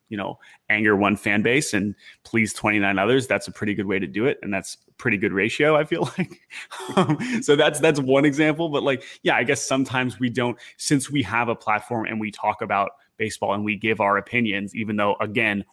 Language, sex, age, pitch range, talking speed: English, male, 20-39, 105-140 Hz, 220 wpm